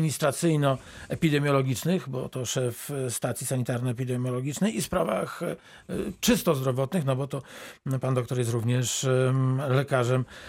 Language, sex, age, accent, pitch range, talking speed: Polish, male, 50-69, native, 120-140 Hz, 105 wpm